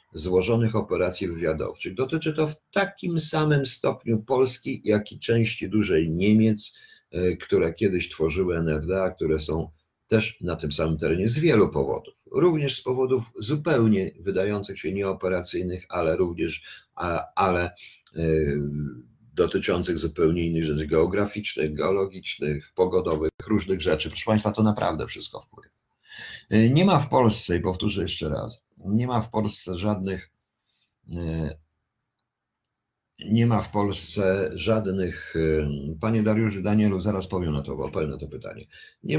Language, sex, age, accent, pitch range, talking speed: Polish, male, 50-69, native, 90-120 Hz, 130 wpm